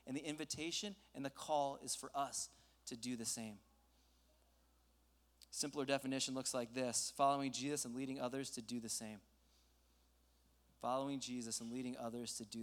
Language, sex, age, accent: English, male, 20-39, American